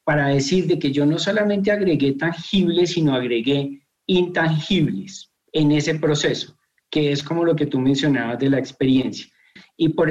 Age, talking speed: 40-59, 160 wpm